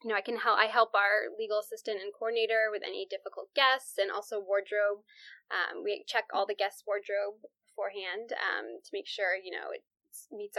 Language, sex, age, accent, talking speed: English, female, 10-29, American, 200 wpm